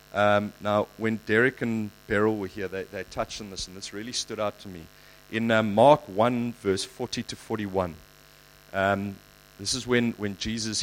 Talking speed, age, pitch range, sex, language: 190 wpm, 30-49, 95-120 Hz, male, English